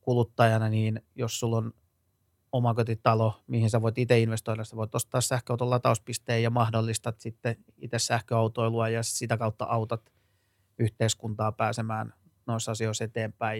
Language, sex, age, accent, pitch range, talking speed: Finnish, male, 30-49, native, 110-120 Hz, 135 wpm